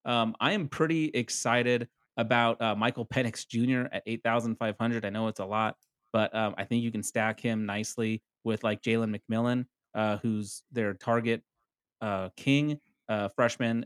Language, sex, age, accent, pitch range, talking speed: English, male, 30-49, American, 110-125 Hz, 165 wpm